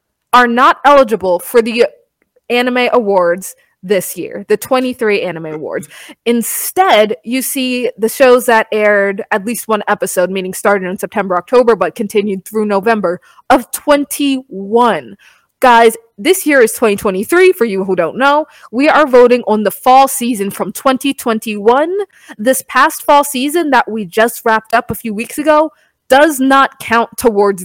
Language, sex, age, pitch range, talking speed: English, female, 20-39, 205-275 Hz, 155 wpm